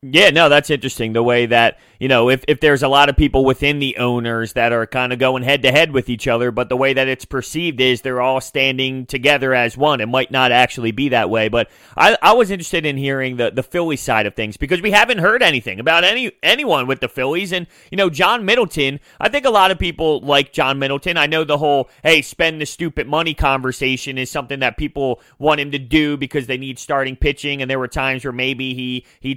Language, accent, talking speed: English, American, 245 wpm